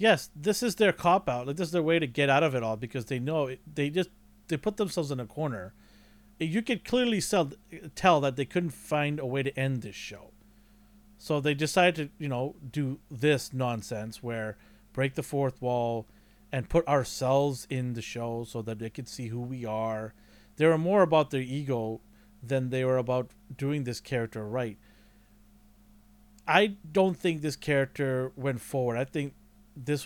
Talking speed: 190 wpm